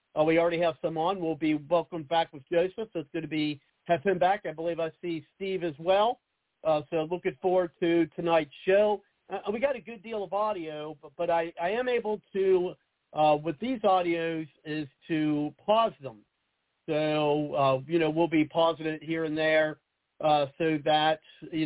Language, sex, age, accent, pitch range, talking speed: English, male, 50-69, American, 155-185 Hz, 200 wpm